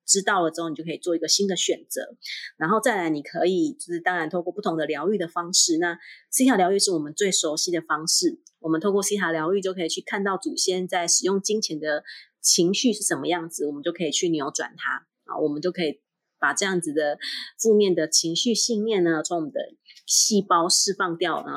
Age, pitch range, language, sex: 30-49, 165-230 Hz, Chinese, female